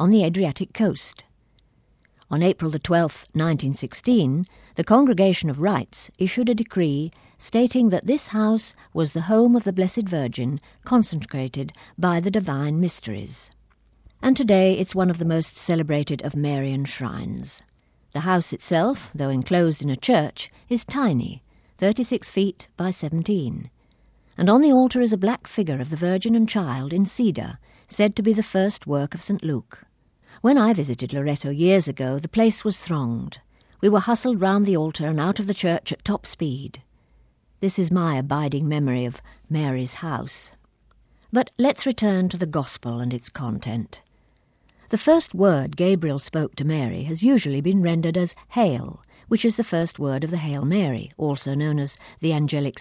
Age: 50-69